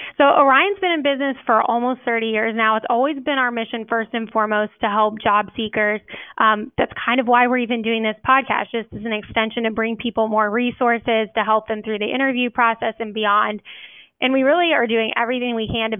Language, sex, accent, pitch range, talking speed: English, female, American, 215-245 Hz, 220 wpm